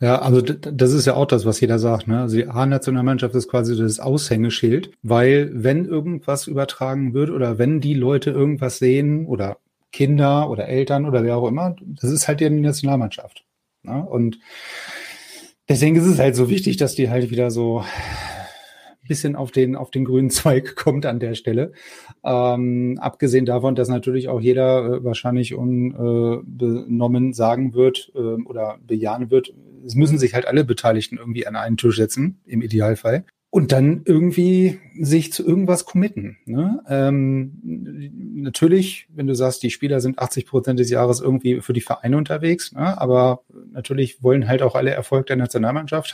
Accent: German